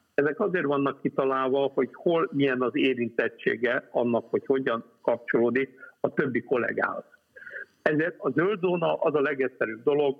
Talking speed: 140 wpm